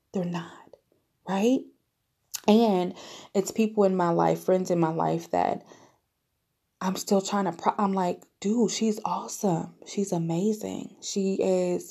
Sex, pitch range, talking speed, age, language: female, 160-205 Hz, 135 wpm, 20-39, English